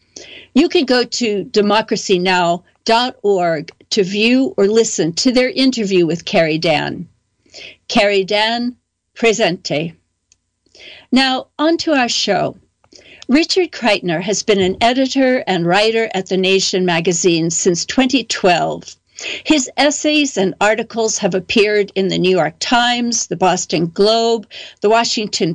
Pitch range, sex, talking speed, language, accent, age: 185-245 Hz, female, 125 wpm, English, American, 60-79